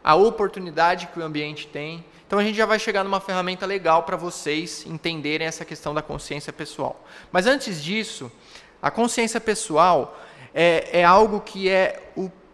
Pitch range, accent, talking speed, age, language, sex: 170-225 Hz, Brazilian, 165 wpm, 20-39, Portuguese, male